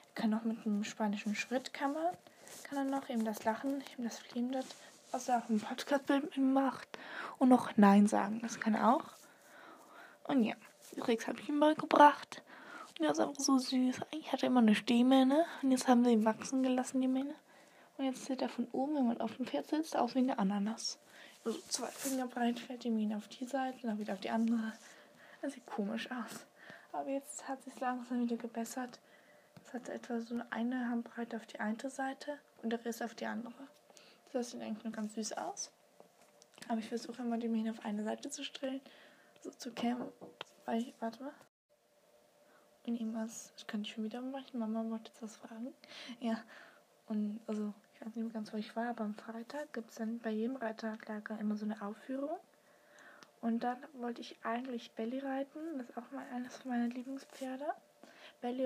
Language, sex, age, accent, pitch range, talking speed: German, female, 20-39, German, 225-270 Hz, 205 wpm